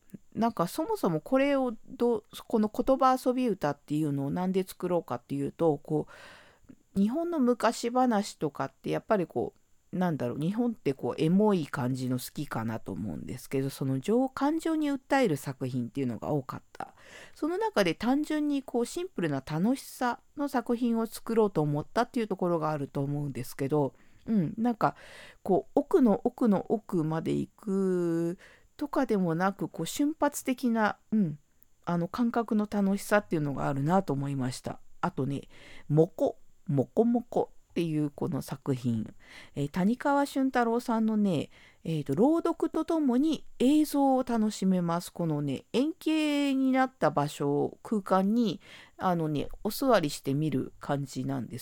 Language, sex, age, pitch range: Japanese, female, 50-69, 150-245 Hz